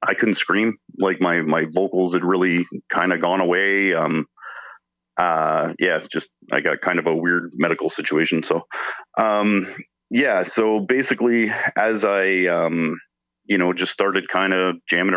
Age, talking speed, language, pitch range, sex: 30-49, 160 wpm, English, 85-100 Hz, male